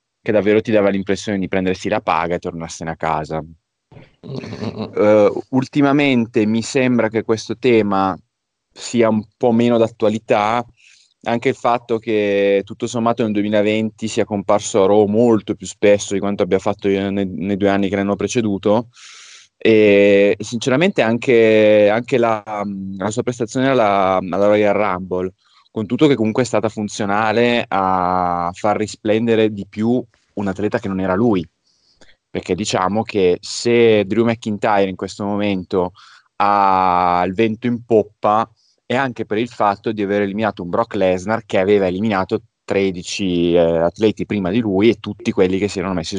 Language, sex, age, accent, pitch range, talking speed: Italian, male, 20-39, native, 95-115 Hz, 160 wpm